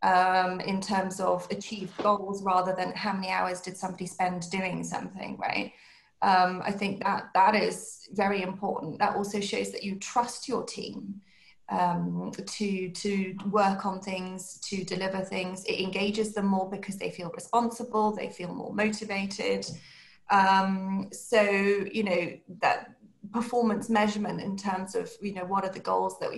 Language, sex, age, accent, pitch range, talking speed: English, female, 30-49, British, 185-215 Hz, 160 wpm